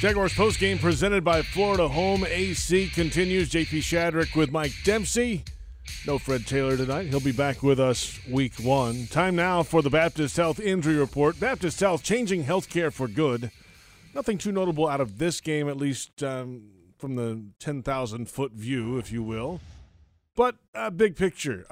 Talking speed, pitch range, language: 170 wpm, 125-165 Hz, English